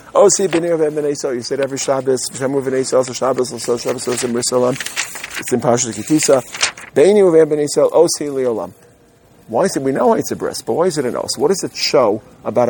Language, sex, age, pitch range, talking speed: English, male, 50-69, 115-140 Hz, 210 wpm